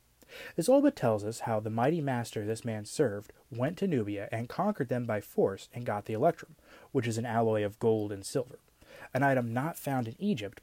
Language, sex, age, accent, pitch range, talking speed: English, male, 30-49, American, 115-150 Hz, 215 wpm